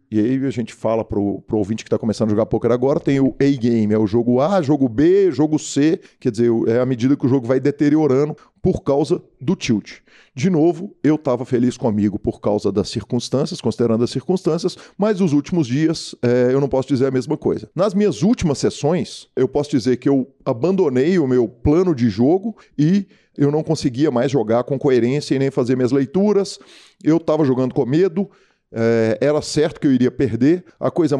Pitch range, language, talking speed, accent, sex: 120-160 Hz, Portuguese, 205 wpm, Brazilian, male